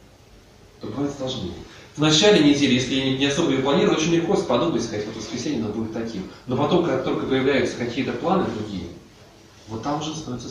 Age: 20-39